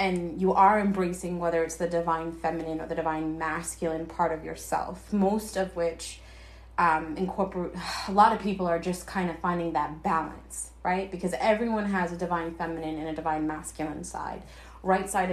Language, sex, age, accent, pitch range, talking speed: English, female, 20-39, American, 165-205 Hz, 180 wpm